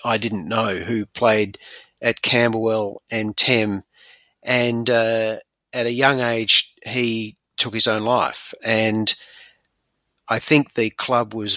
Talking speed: 135 wpm